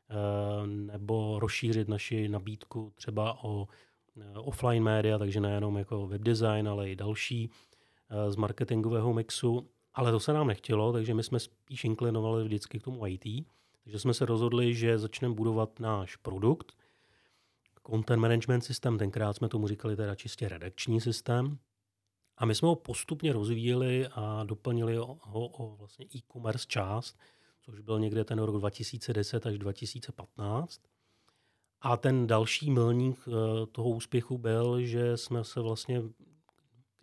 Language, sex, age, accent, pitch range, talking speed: Czech, male, 30-49, native, 105-120 Hz, 145 wpm